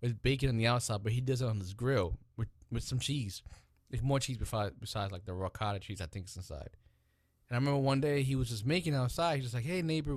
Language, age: English, 20-39